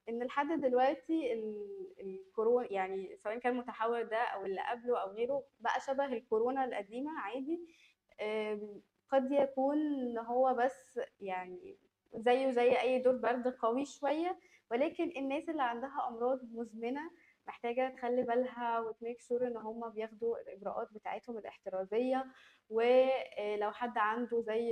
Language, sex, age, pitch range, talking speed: Arabic, female, 20-39, 215-265 Hz, 125 wpm